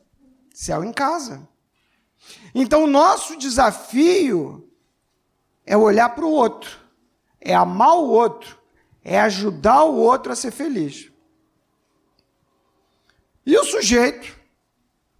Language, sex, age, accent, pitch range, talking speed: Portuguese, male, 50-69, Brazilian, 205-275 Hz, 105 wpm